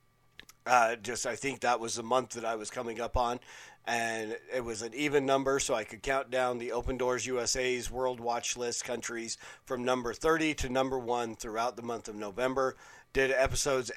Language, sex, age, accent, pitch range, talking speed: English, male, 40-59, American, 115-135 Hz, 200 wpm